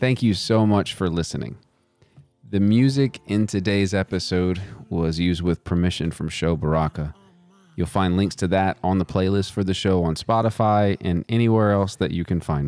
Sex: male